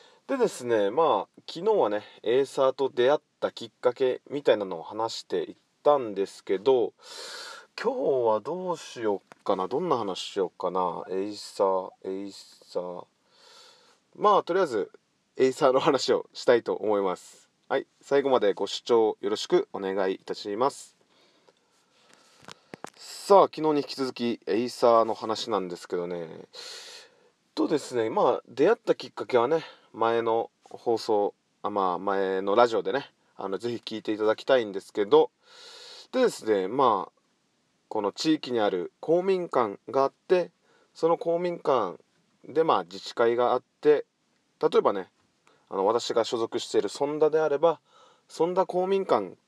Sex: male